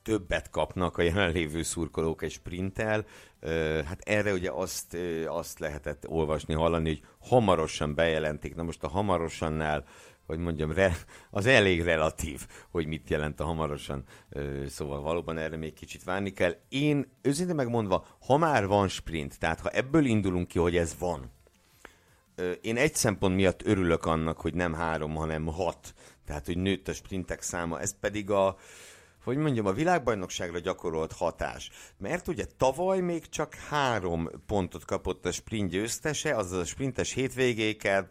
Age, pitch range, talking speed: 60-79, 80-110 Hz, 155 wpm